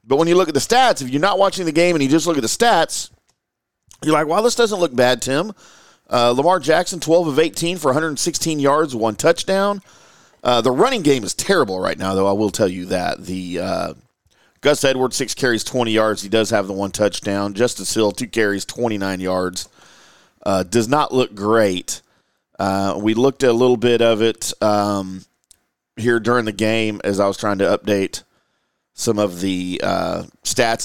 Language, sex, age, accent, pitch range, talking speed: English, male, 40-59, American, 100-130 Hz, 200 wpm